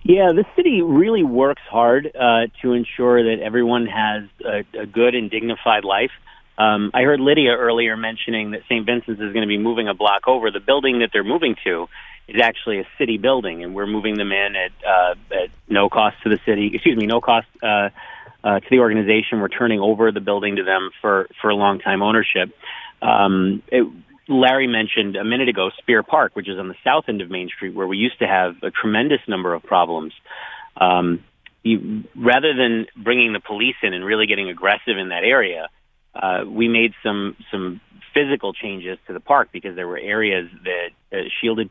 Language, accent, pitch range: English, American, 95-115 Hz